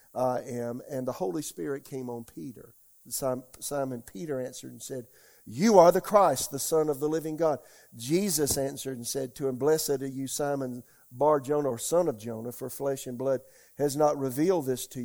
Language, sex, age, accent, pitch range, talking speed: English, male, 50-69, American, 130-155 Hz, 190 wpm